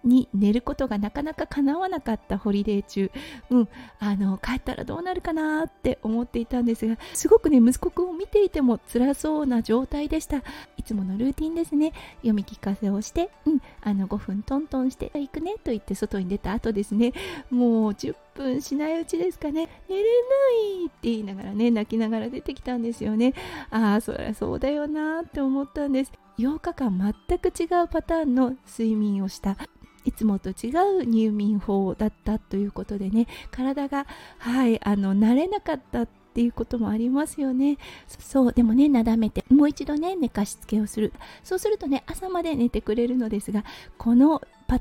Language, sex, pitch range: Japanese, female, 220-305 Hz